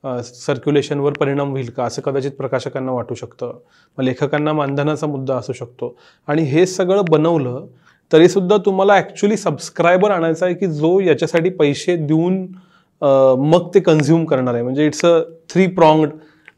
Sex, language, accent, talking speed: male, Marathi, native, 145 wpm